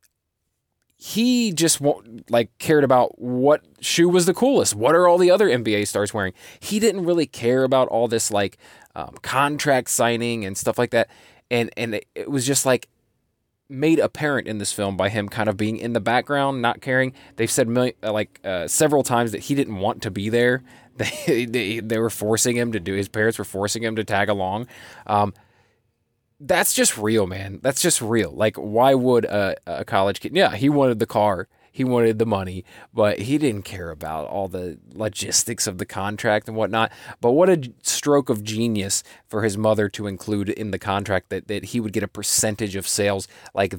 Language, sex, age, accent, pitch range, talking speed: English, male, 20-39, American, 105-125 Hz, 200 wpm